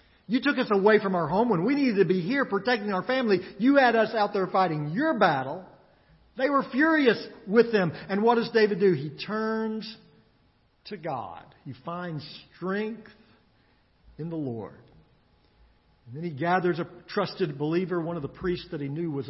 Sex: male